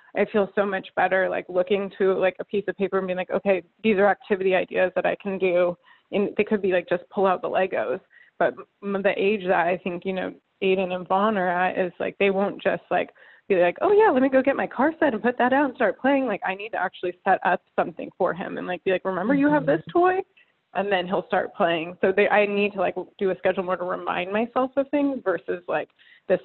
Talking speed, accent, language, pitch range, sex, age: 255 wpm, American, English, 180-220 Hz, female, 20-39